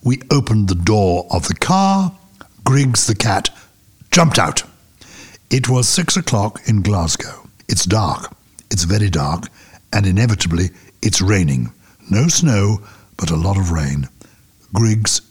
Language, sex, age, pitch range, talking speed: English, male, 60-79, 95-125 Hz, 135 wpm